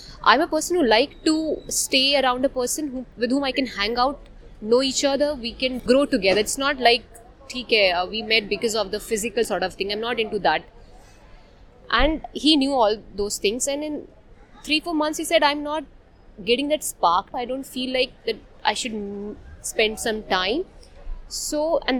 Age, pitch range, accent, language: 20-39, 210-280 Hz, Indian, English